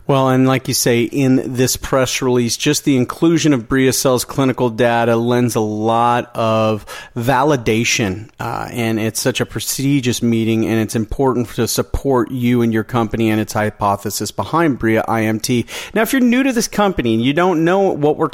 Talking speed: 185 wpm